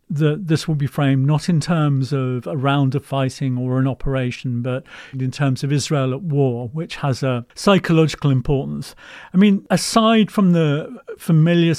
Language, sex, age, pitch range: English, male, 50-69, 130-155 Hz